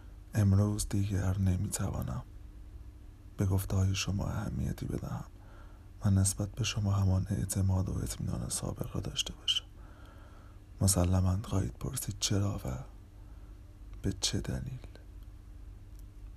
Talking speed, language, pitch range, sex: 110 wpm, Persian, 95-100 Hz, male